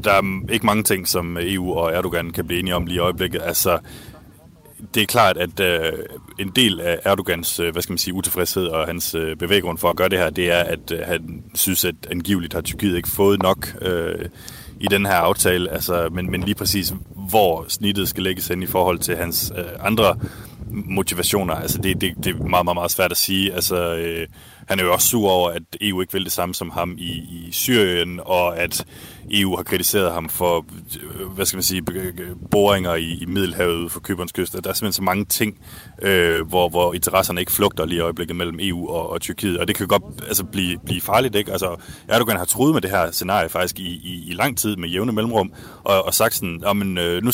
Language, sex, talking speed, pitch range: Danish, male, 220 wpm, 85-100 Hz